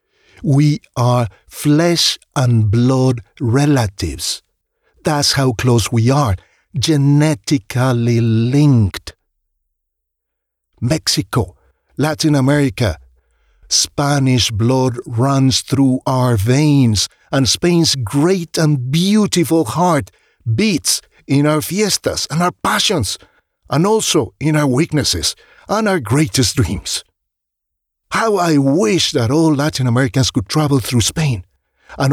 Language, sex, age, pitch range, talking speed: English, male, 60-79, 115-155 Hz, 105 wpm